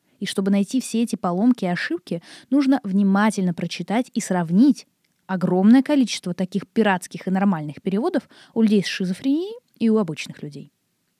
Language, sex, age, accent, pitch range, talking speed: Russian, female, 20-39, native, 185-250 Hz, 150 wpm